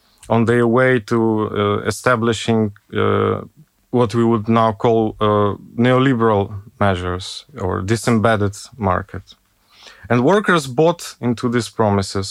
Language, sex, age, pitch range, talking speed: Romanian, male, 20-39, 105-130 Hz, 115 wpm